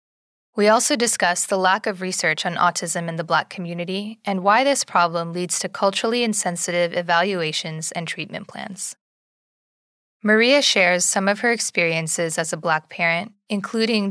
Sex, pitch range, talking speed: female, 170-215 Hz, 155 wpm